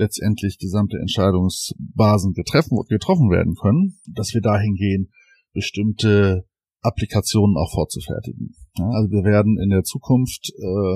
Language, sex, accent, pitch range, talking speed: German, male, German, 95-115 Hz, 125 wpm